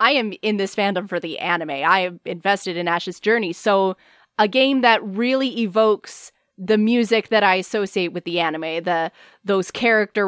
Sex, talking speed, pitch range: female, 180 wpm, 185-235 Hz